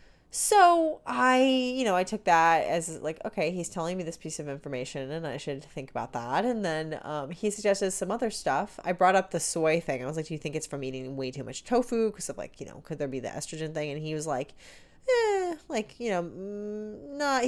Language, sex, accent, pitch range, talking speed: English, female, American, 150-220 Hz, 245 wpm